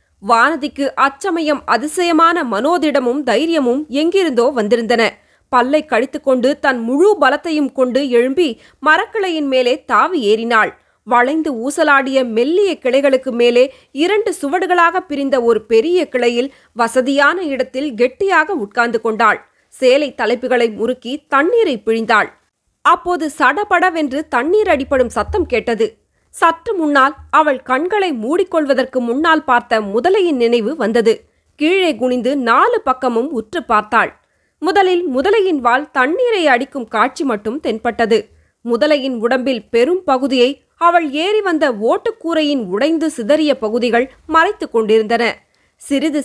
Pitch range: 240-325 Hz